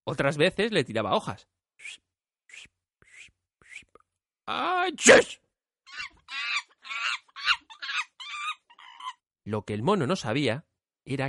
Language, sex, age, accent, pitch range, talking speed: Spanish, male, 30-49, Spanish, 115-185 Hz, 100 wpm